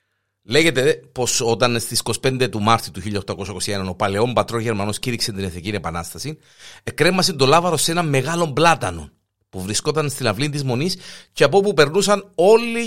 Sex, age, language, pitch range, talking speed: male, 50-69, Greek, 100-150 Hz, 165 wpm